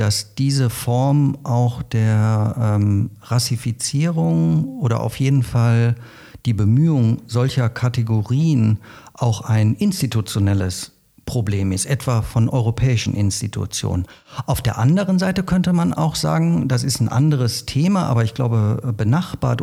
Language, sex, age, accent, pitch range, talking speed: German, male, 50-69, German, 115-145 Hz, 125 wpm